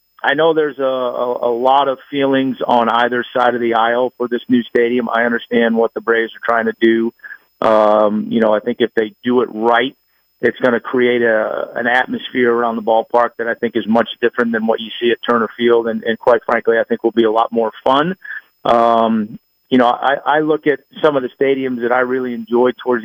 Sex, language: male, English